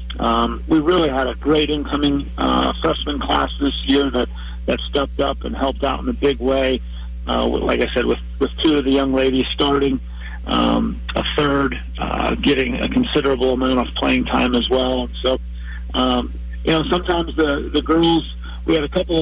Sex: male